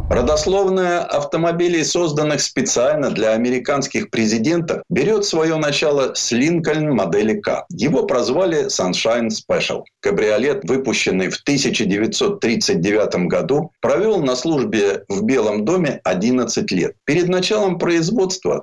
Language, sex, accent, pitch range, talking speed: Russian, male, native, 125-180 Hz, 110 wpm